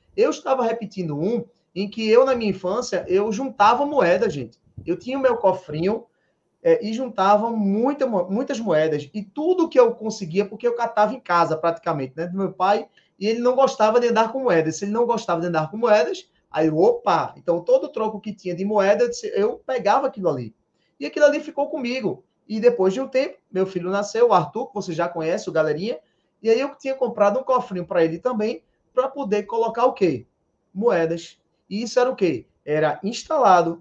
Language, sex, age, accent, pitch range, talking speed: Portuguese, male, 20-39, Brazilian, 175-245 Hz, 200 wpm